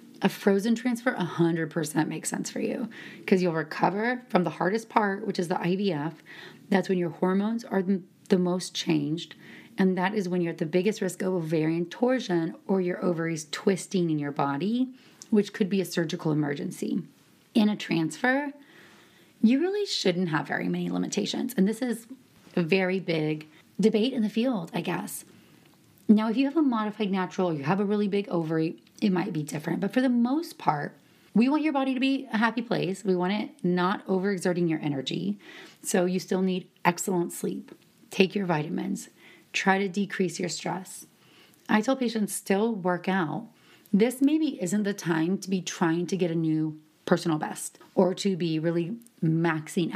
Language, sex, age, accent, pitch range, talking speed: English, female, 30-49, American, 170-220 Hz, 180 wpm